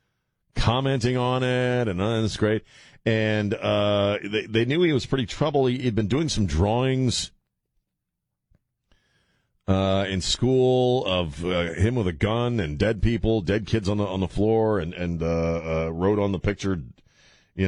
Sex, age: male, 40-59